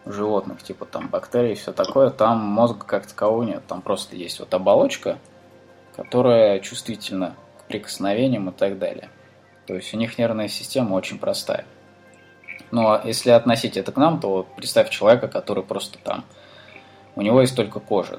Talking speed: 160 wpm